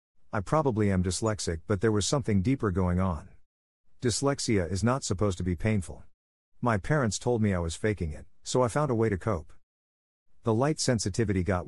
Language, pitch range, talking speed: English, 90-115 Hz, 190 wpm